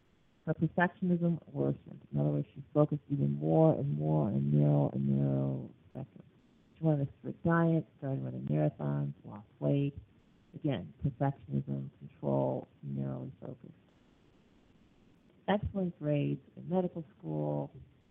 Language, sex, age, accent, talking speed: English, female, 50-69, American, 125 wpm